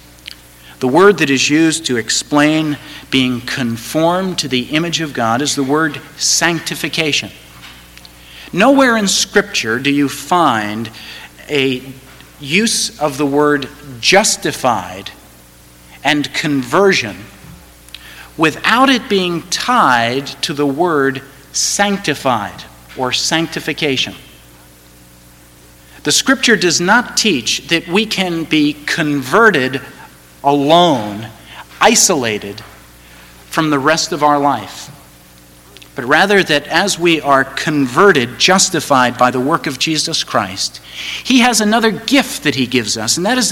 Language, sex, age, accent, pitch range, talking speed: English, male, 50-69, American, 105-170 Hz, 115 wpm